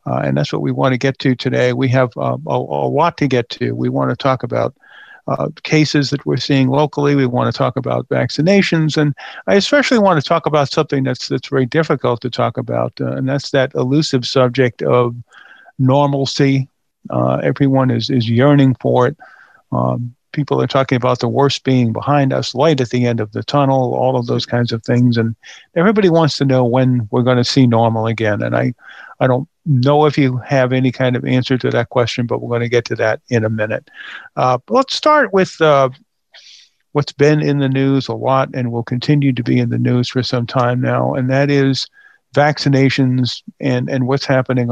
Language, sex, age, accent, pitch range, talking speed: English, male, 50-69, American, 120-145 Hz, 215 wpm